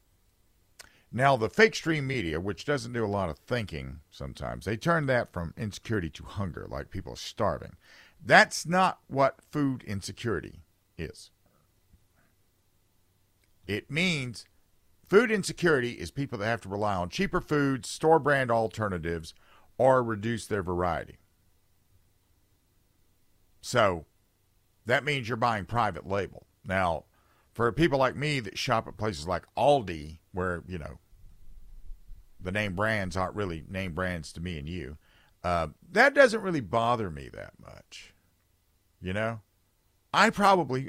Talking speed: 135 wpm